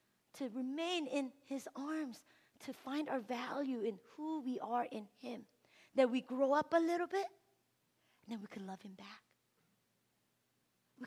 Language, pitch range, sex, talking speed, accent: English, 195-275 Hz, female, 165 wpm, American